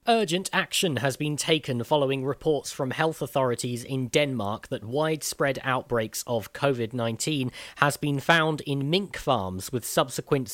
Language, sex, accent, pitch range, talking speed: English, male, British, 120-145 Hz, 140 wpm